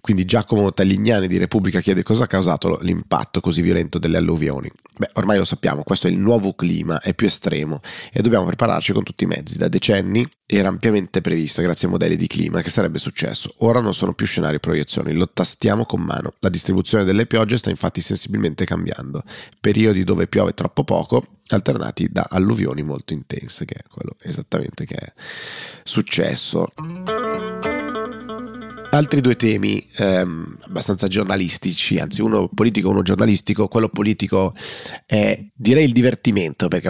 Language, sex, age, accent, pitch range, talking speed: Italian, male, 30-49, native, 90-110 Hz, 165 wpm